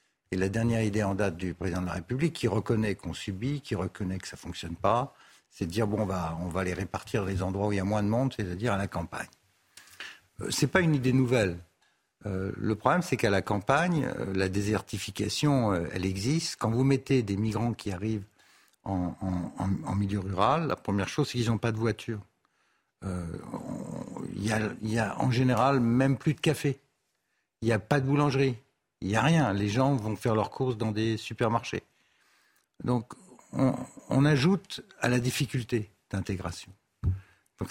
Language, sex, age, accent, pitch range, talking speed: French, male, 60-79, French, 95-130 Hz, 200 wpm